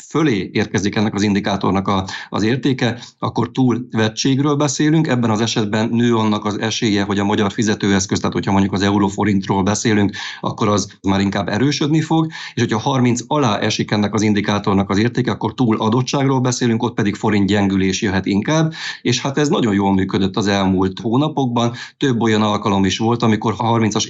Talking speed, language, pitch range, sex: 175 wpm, Hungarian, 105-125 Hz, male